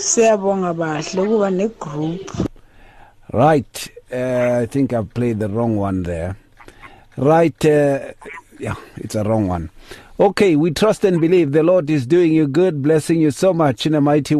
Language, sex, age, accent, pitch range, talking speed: English, male, 50-69, South African, 120-160 Hz, 145 wpm